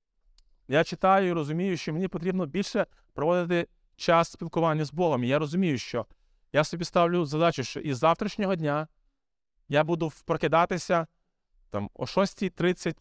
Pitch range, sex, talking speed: 140-190 Hz, male, 145 wpm